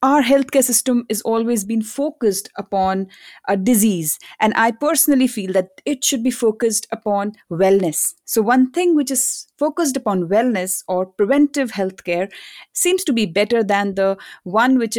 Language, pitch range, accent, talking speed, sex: English, 200-255 Hz, Indian, 160 wpm, female